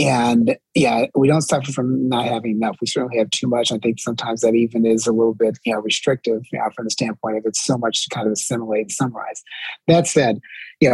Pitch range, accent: 115-140 Hz, American